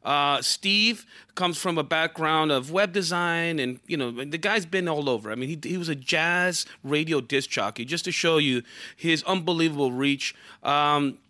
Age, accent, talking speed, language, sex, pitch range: 30-49, American, 185 wpm, English, male, 140-170 Hz